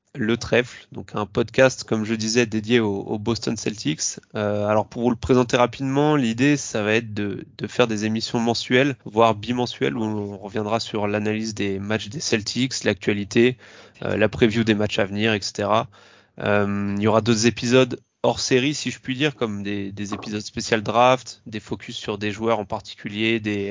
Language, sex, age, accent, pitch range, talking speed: French, male, 20-39, French, 105-125 Hz, 190 wpm